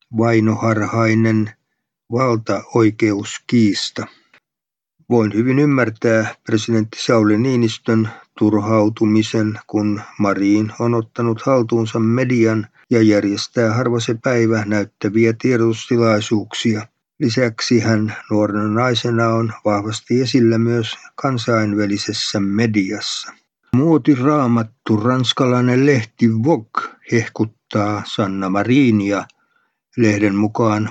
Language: Finnish